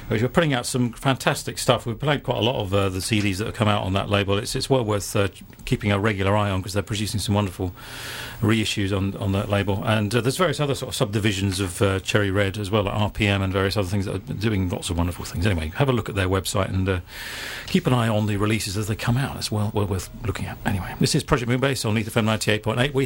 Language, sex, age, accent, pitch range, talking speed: English, male, 40-59, British, 105-130 Hz, 270 wpm